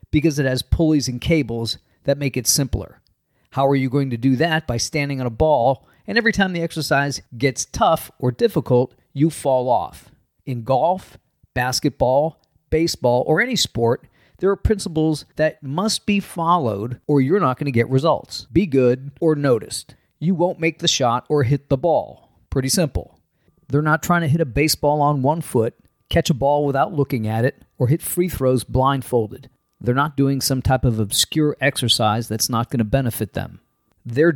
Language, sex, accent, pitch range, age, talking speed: English, male, American, 125-155 Hz, 40-59, 185 wpm